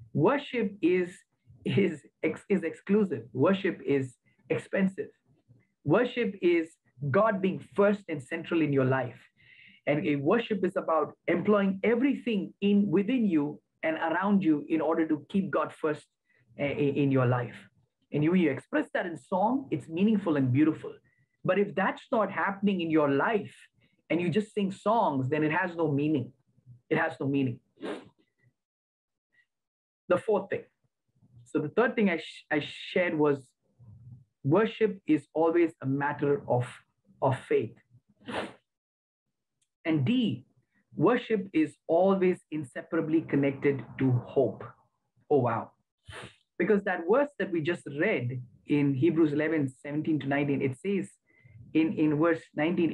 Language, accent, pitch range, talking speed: English, Indian, 140-195 Hz, 145 wpm